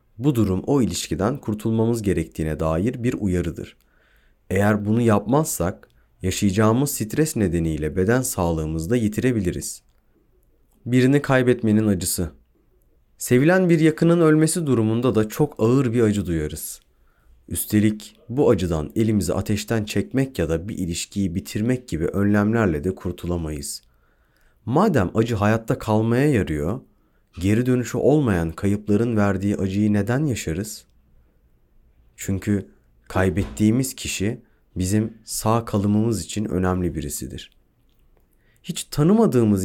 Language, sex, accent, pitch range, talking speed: Turkish, male, native, 95-120 Hz, 110 wpm